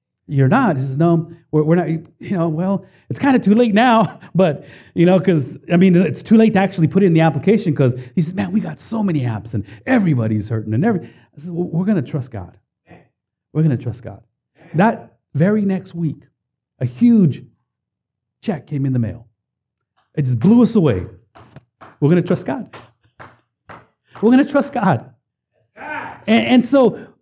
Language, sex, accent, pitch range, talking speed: English, male, American, 135-210 Hz, 185 wpm